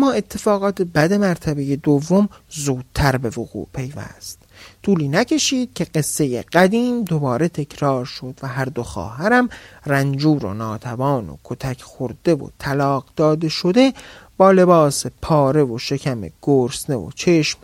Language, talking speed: Persian, 135 wpm